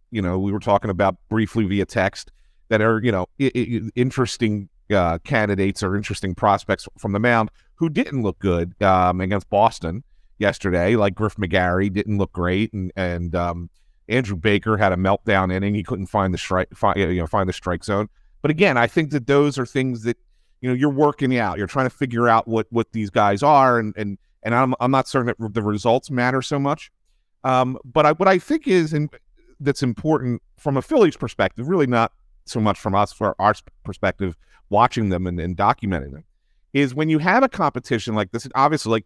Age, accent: 40-59, American